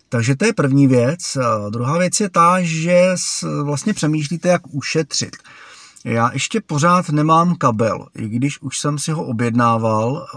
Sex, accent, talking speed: male, native, 150 wpm